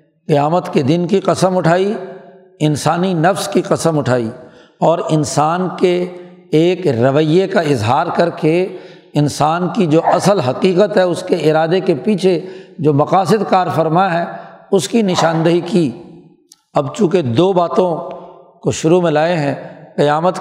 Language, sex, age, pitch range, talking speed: Urdu, male, 60-79, 155-185 Hz, 145 wpm